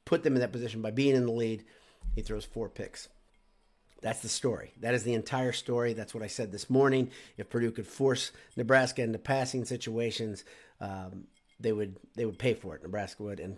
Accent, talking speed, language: American, 210 wpm, English